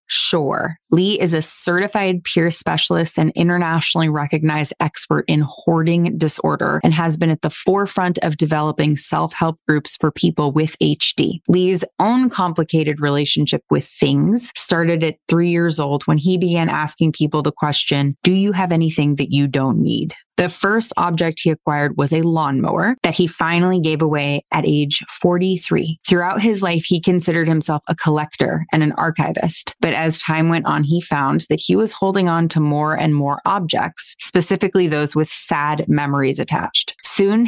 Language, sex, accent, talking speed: English, female, American, 170 wpm